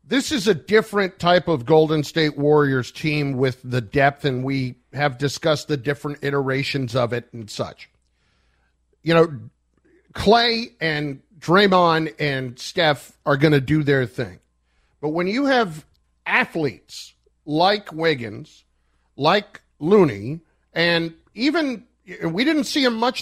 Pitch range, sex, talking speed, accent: 140-180 Hz, male, 135 wpm, American